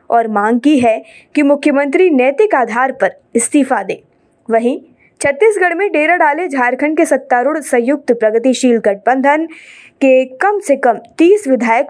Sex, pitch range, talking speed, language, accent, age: female, 235-300 Hz, 140 wpm, Hindi, native, 20-39